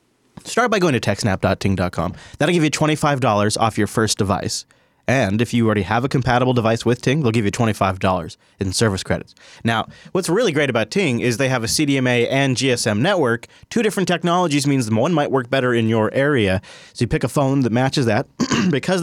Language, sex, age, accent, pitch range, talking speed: English, male, 30-49, American, 110-150 Hz, 200 wpm